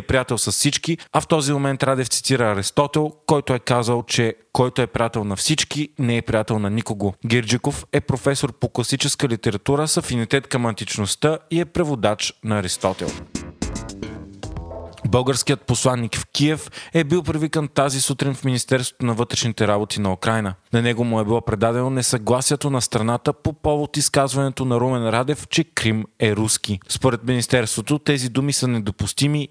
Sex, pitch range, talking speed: male, 115-140 Hz, 165 wpm